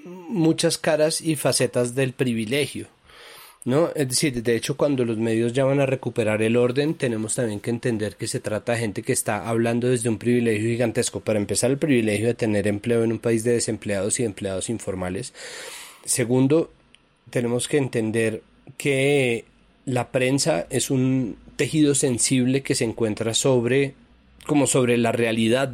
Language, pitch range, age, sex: Spanish, 115-140 Hz, 30-49, male